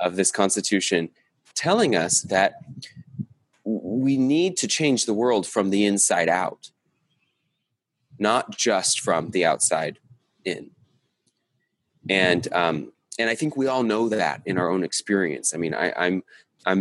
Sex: male